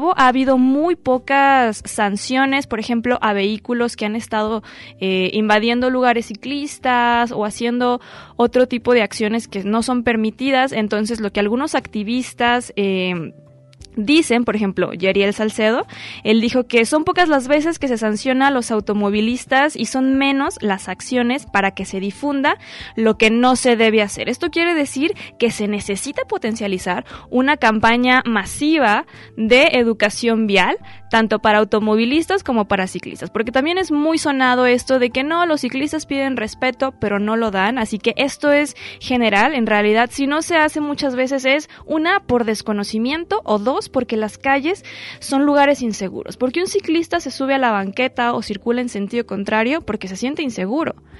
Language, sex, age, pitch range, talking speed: Spanish, female, 20-39, 215-275 Hz, 170 wpm